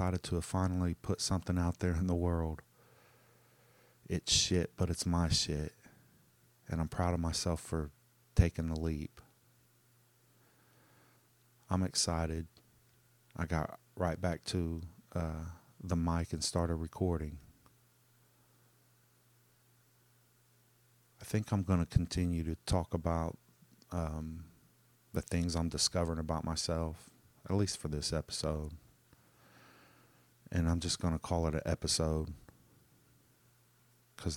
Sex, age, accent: male, 30-49, American